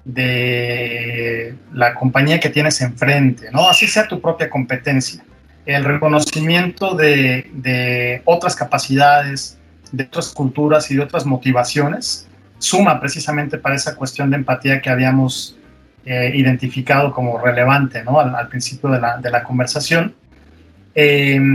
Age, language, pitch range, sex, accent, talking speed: 30-49, Spanish, 125-155 Hz, male, Mexican, 135 wpm